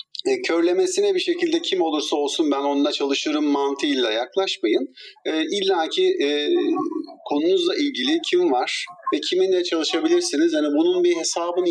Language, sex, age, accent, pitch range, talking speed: Turkish, male, 50-69, native, 320-385 Hz, 140 wpm